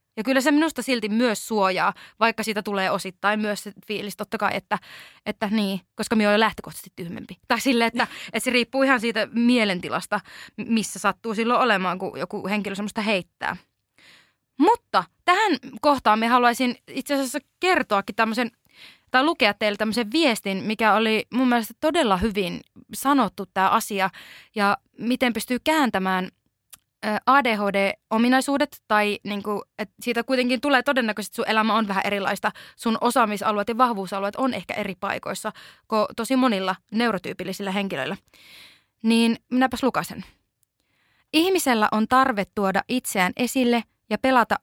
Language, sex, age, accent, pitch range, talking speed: Finnish, female, 20-39, native, 200-250 Hz, 145 wpm